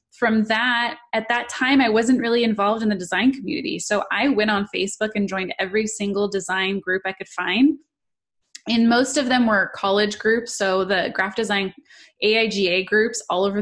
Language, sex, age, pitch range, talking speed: English, female, 20-39, 195-230 Hz, 185 wpm